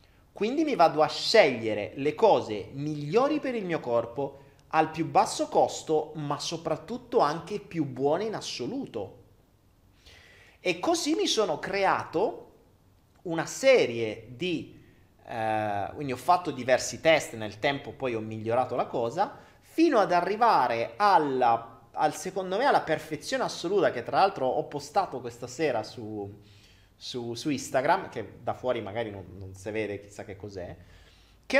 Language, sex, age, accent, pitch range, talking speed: Italian, male, 30-49, native, 110-175 Hz, 145 wpm